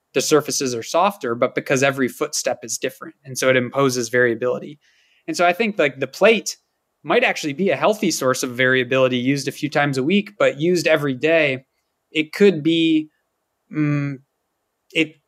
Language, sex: English, male